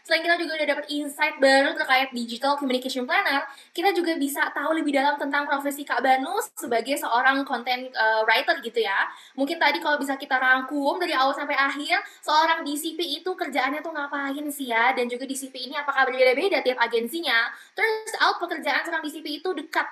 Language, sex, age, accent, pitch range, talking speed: Indonesian, female, 20-39, native, 255-325 Hz, 185 wpm